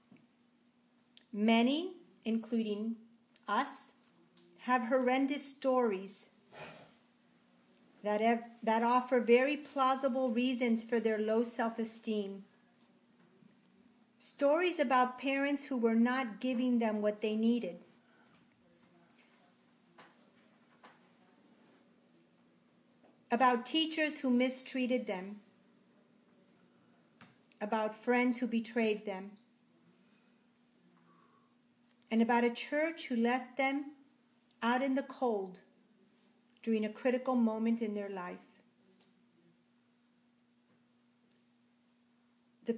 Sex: female